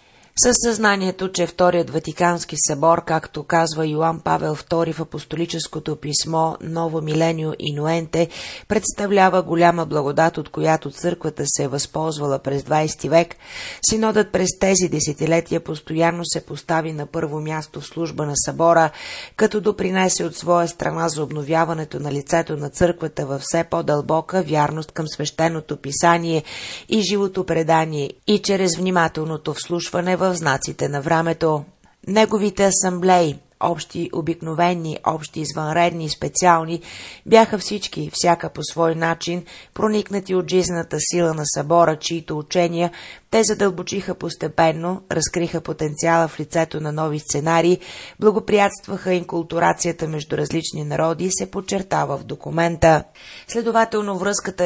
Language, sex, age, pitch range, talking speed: Bulgarian, female, 30-49, 155-180 Hz, 125 wpm